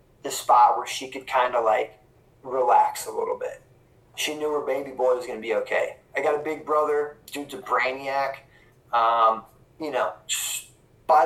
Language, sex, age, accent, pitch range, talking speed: English, male, 20-39, American, 125-150 Hz, 180 wpm